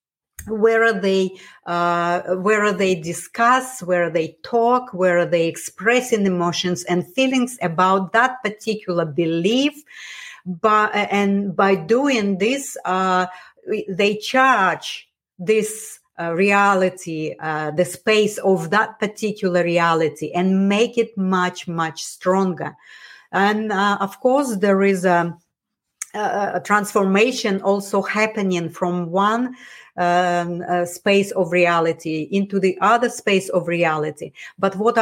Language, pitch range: English, 180-215 Hz